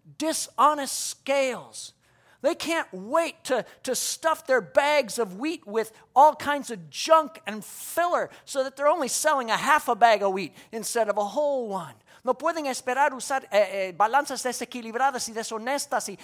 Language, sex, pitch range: English, male, 190-280 Hz